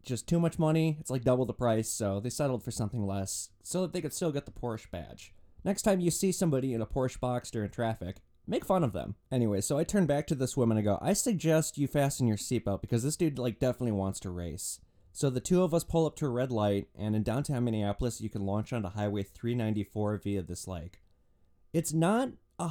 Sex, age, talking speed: male, 20-39, 240 wpm